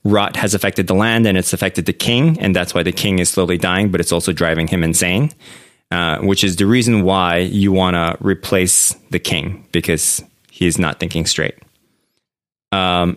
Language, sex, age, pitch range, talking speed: English, male, 20-39, 90-115 Hz, 195 wpm